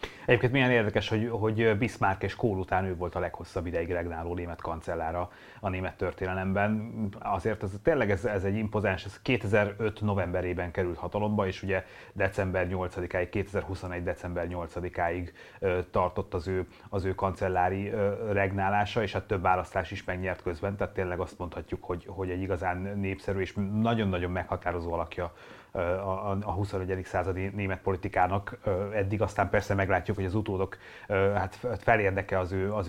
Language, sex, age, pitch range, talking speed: Hungarian, male, 30-49, 90-105 Hz, 155 wpm